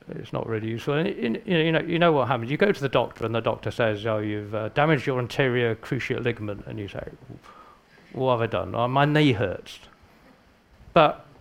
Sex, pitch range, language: male, 115-160 Hz, English